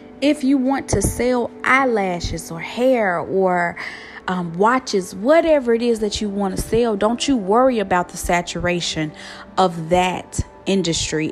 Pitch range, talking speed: 170-225 Hz, 150 wpm